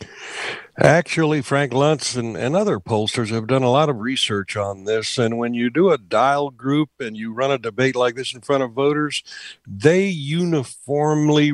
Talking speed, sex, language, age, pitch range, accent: 180 wpm, male, English, 60-79, 115-145 Hz, American